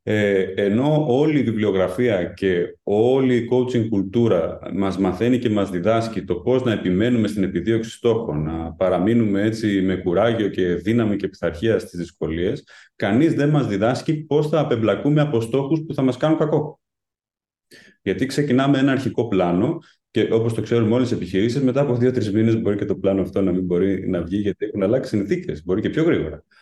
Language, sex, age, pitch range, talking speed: Greek, male, 30-49, 95-125 Hz, 185 wpm